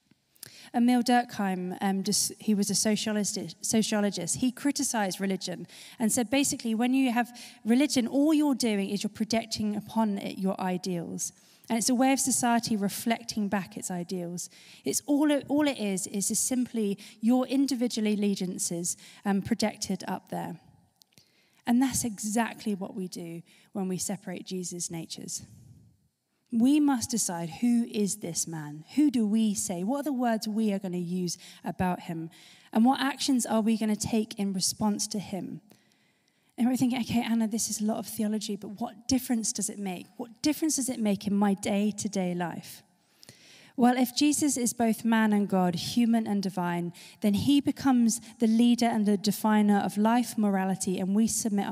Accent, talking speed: British, 175 wpm